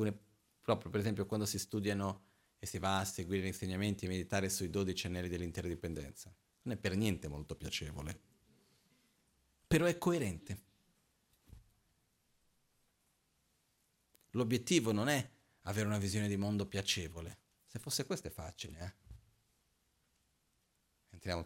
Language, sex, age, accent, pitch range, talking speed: Italian, male, 30-49, native, 90-115 Hz, 125 wpm